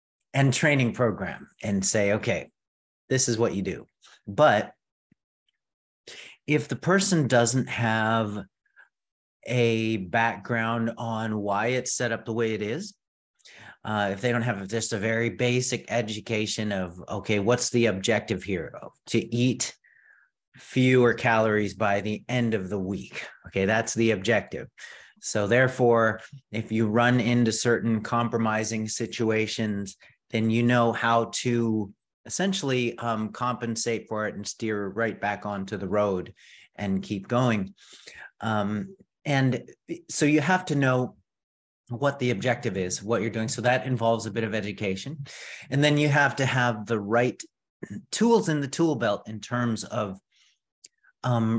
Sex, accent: male, American